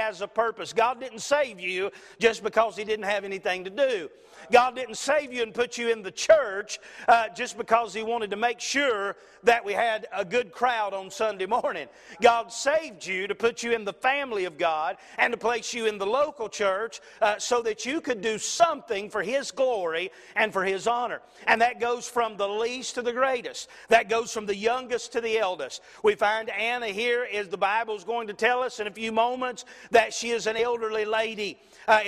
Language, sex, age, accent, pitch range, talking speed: English, male, 40-59, American, 210-245 Hz, 215 wpm